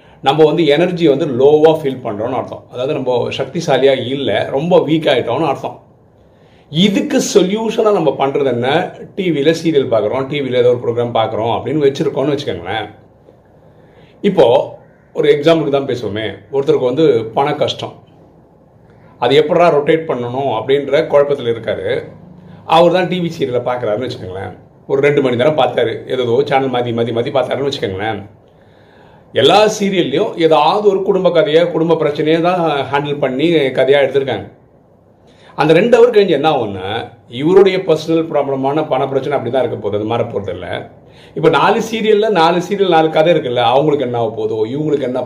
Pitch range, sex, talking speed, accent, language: 135-185 Hz, male, 100 wpm, Indian, English